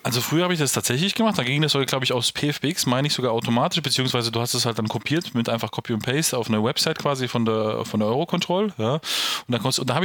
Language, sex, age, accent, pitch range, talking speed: German, male, 20-39, German, 120-150 Hz, 255 wpm